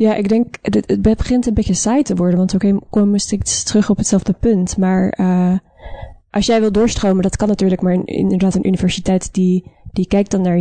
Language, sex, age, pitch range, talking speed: Dutch, female, 20-39, 180-205 Hz, 210 wpm